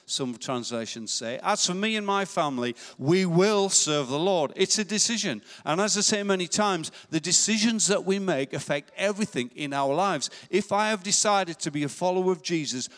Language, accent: English, British